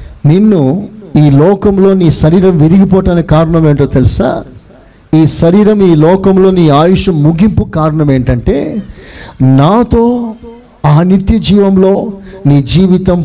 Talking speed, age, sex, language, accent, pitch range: 110 wpm, 50-69, male, Telugu, native, 130-200 Hz